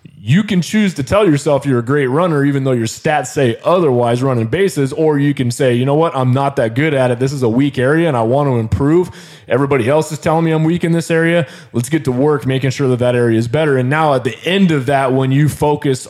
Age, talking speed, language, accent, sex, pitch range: 20-39, 270 wpm, English, American, male, 115-145 Hz